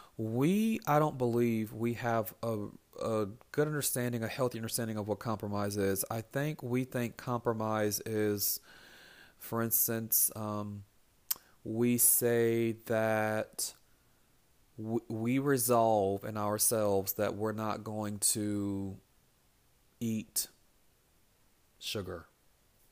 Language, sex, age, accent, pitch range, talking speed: English, male, 30-49, American, 100-115 Hz, 105 wpm